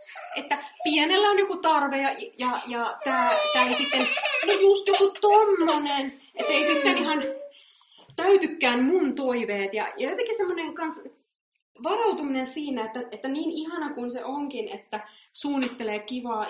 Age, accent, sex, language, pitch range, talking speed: 20-39, native, female, Finnish, 195-280 Hz, 140 wpm